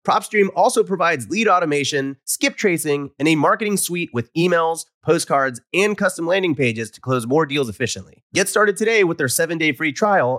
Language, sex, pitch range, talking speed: English, male, 130-190 Hz, 180 wpm